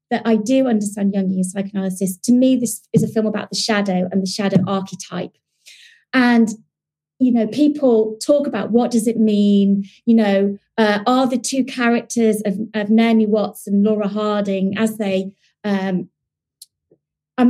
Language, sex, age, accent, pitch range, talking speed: English, female, 30-49, British, 200-240 Hz, 160 wpm